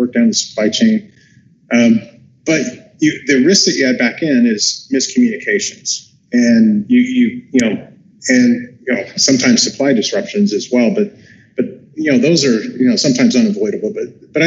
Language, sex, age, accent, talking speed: English, male, 30-49, American, 175 wpm